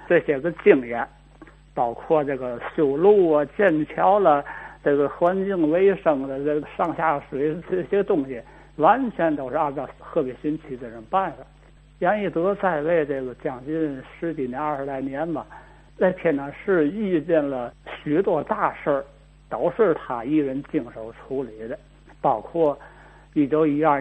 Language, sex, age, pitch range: Chinese, male, 60-79, 140-165 Hz